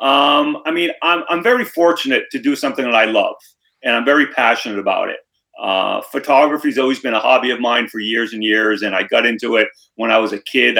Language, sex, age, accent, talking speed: English, male, 30-49, American, 230 wpm